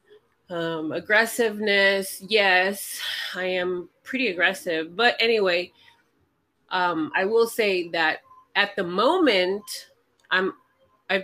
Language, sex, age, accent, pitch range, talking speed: English, female, 30-49, American, 160-200 Hz, 100 wpm